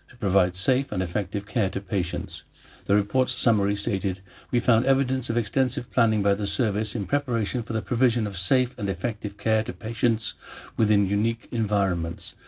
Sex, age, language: male, 60-79, English